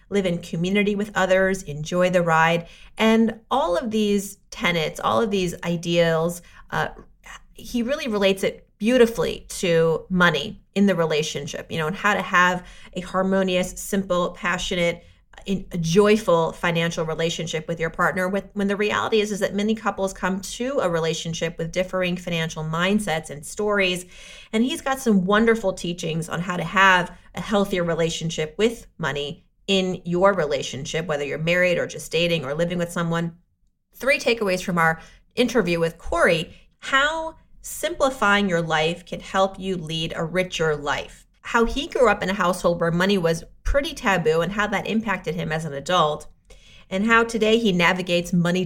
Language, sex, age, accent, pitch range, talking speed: English, female, 30-49, American, 165-205 Hz, 165 wpm